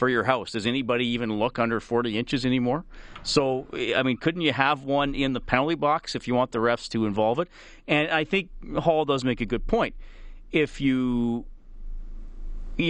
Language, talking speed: English, 195 wpm